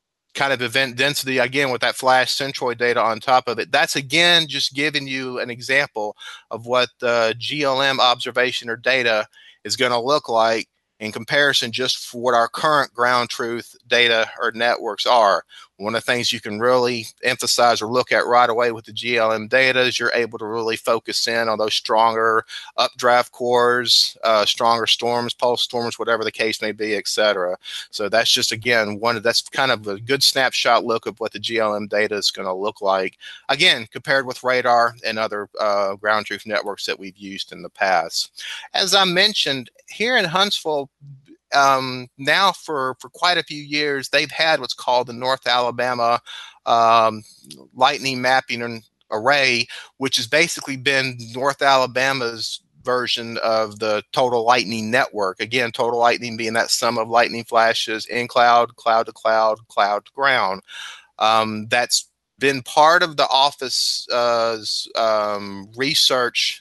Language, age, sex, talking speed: English, 30-49, male, 165 wpm